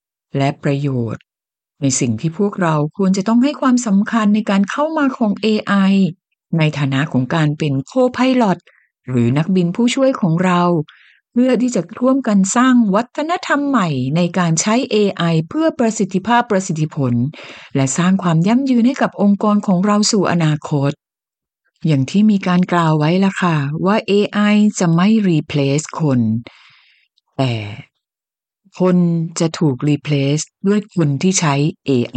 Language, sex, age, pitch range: Thai, female, 60-79, 150-215 Hz